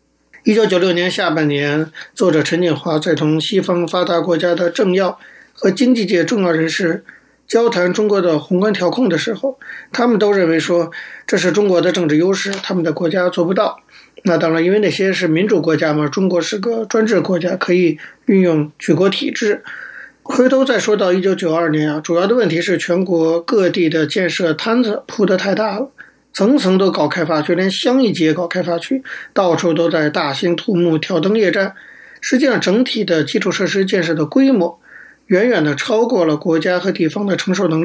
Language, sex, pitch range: Chinese, male, 165-210 Hz